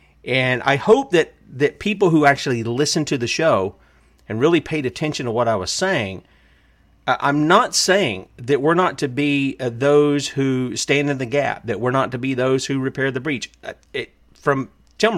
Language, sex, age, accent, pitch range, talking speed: English, male, 40-59, American, 115-155 Hz, 185 wpm